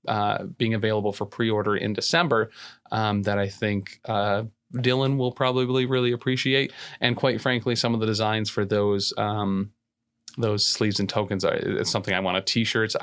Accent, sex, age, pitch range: American, male, 30-49, 105-135 Hz